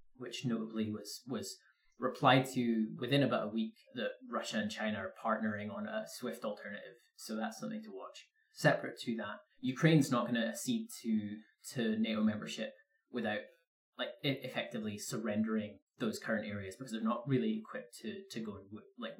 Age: 20-39